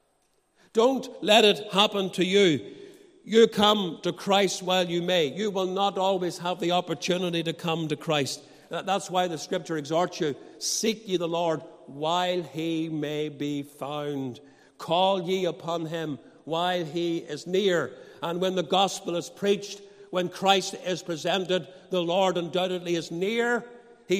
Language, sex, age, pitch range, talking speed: English, male, 60-79, 170-200 Hz, 155 wpm